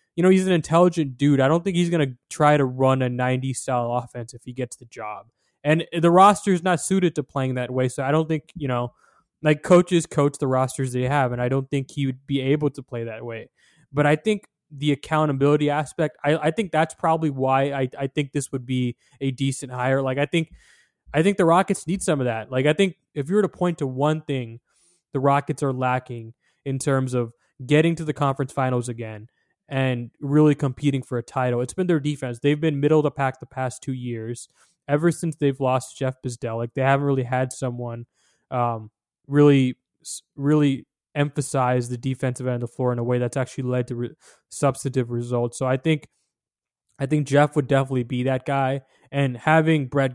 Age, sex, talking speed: 20-39, male, 215 wpm